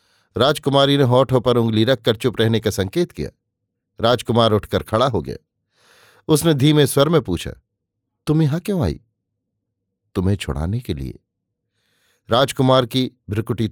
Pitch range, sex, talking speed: 105-125 Hz, male, 140 wpm